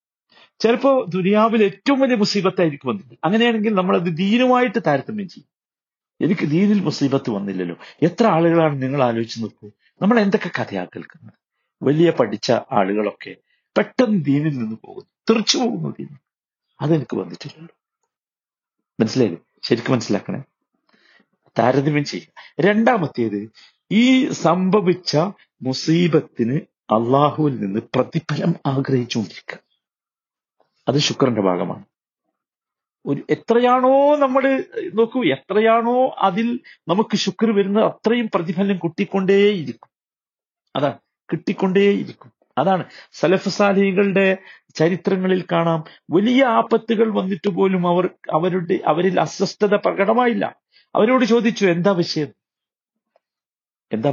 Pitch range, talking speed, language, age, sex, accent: 140-220 Hz, 95 wpm, Malayalam, 50-69, male, native